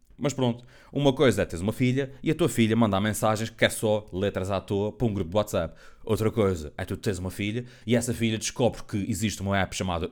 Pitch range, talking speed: 90-140 Hz, 245 wpm